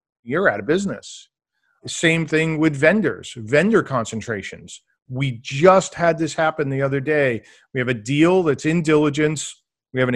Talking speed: 165 wpm